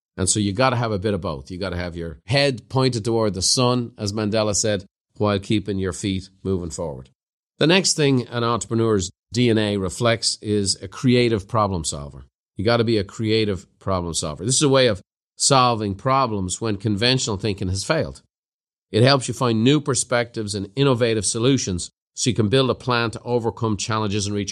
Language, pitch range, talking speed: English, 105-130 Hz, 200 wpm